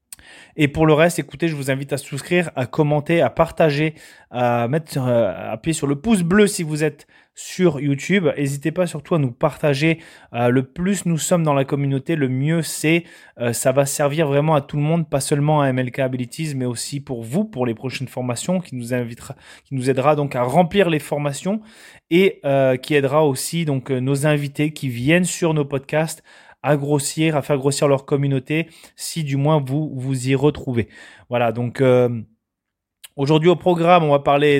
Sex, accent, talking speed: male, French, 190 wpm